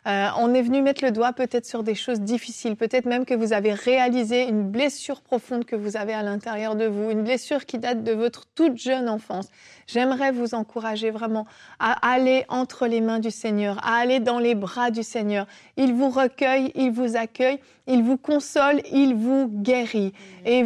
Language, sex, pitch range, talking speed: French, female, 225-270 Hz, 200 wpm